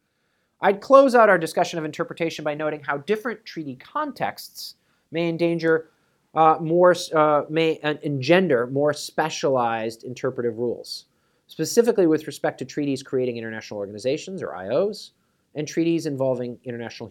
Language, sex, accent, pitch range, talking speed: English, male, American, 120-165 Hz, 135 wpm